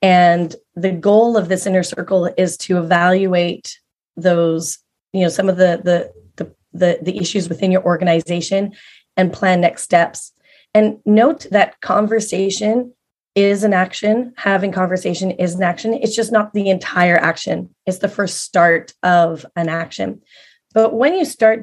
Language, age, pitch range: English, 30-49, 185-215 Hz